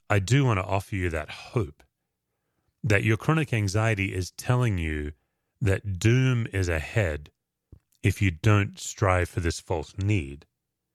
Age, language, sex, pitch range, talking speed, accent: 30-49, English, male, 90-115 Hz, 150 wpm, American